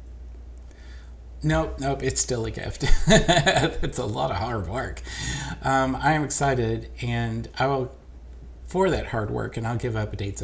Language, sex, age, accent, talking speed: English, male, 50-69, American, 155 wpm